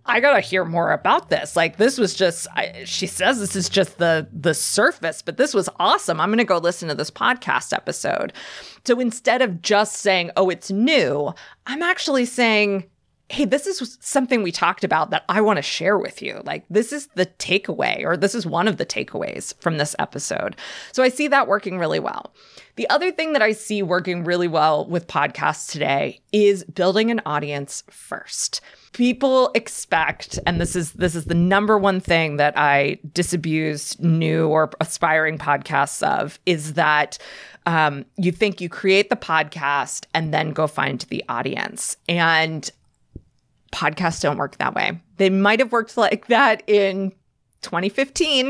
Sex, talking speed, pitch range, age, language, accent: female, 180 wpm, 160-215 Hz, 20-39, English, American